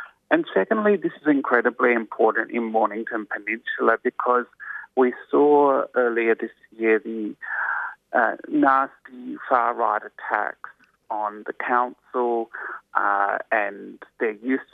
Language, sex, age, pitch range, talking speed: English, male, 30-49, 110-170 Hz, 110 wpm